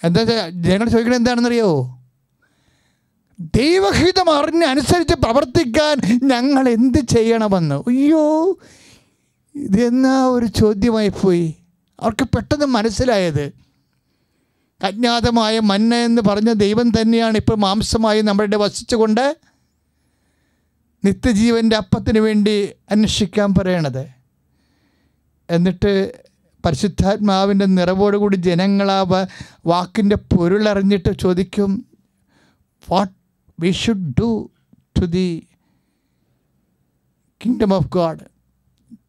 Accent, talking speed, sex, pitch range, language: Indian, 55 wpm, male, 175-235 Hz, English